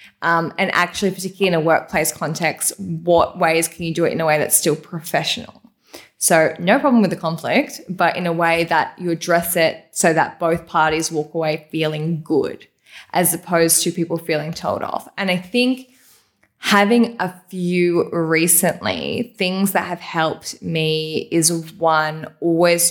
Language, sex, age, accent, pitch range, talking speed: English, female, 10-29, Australian, 160-185 Hz, 170 wpm